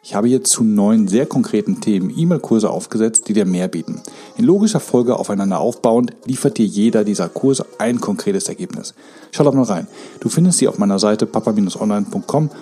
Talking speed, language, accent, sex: 180 wpm, German, German, male